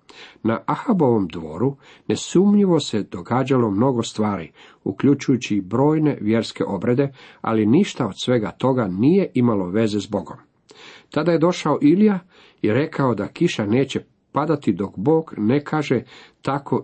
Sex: male